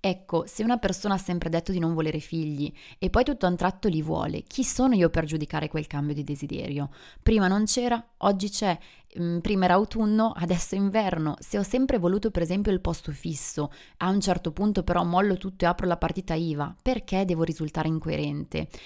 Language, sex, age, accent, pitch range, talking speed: Italian, female, 20-39, native, 165-200 Hz, 205 wpm